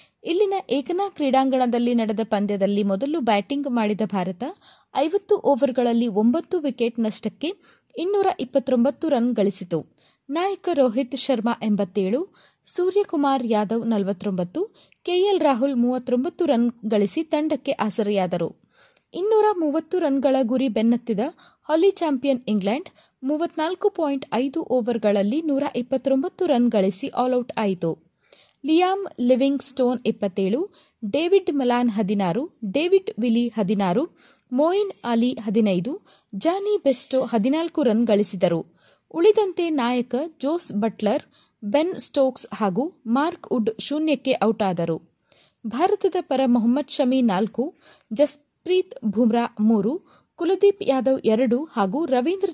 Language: Kannada